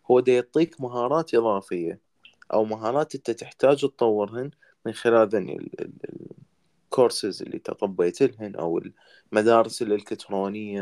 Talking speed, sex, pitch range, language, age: 110 wpm, male, 105-130 Hz, Arabic, 20-39